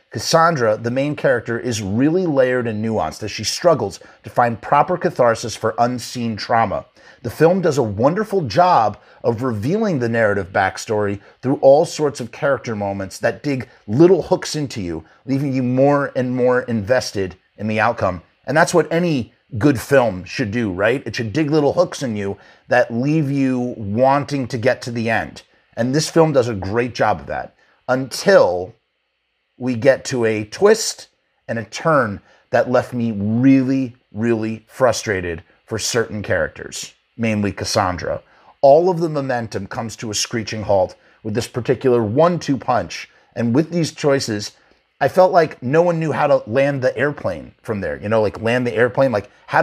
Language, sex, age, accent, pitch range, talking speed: English, male, 30-49, American, 110-145 Hz, 175 wpm